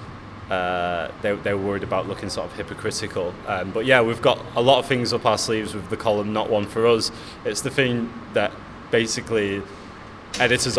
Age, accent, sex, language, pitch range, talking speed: 20-39, British, male, English, 100-110 Hz, 190 wpm